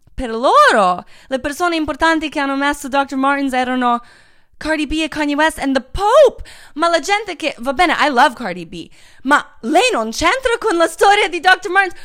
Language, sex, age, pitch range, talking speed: Italian, female, 20-39, 210-325 Hz, 195 wpm